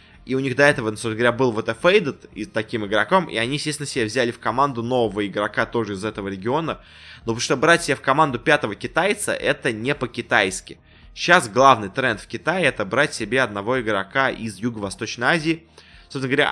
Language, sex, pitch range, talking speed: Russian, male, 105-140 Hz, 195 wpm